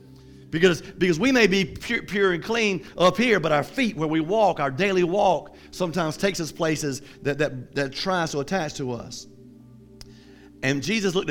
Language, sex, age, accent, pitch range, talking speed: English, male, 50-69, American, 140-190 Hz, 185 wpm